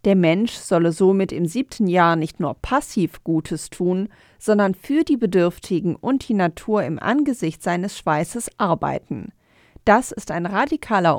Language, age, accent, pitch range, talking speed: German, 40-59, German, 155-210 Hz, 150 wpm